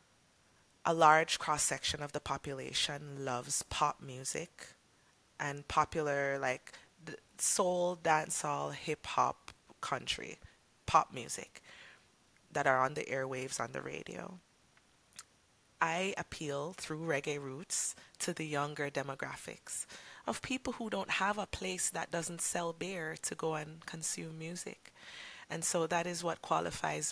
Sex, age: female, 20-39